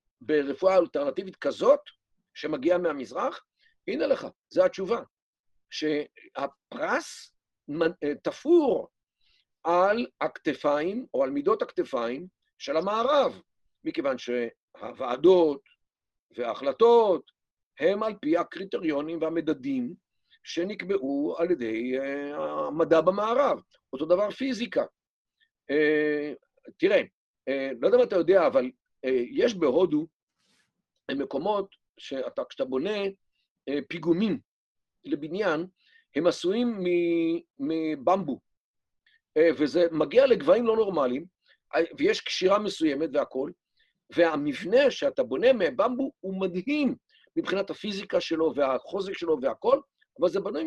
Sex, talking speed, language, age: male, 90 wpm, Hebrew, 50-69